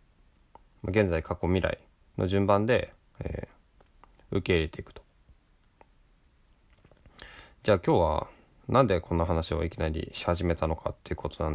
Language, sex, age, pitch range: Japanese, male, 20-39, 85-110 Hz